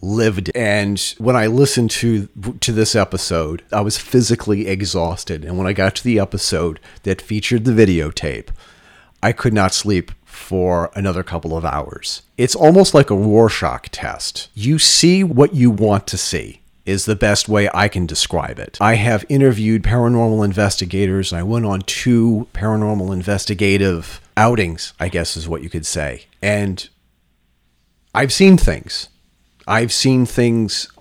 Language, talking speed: English, 160 wpm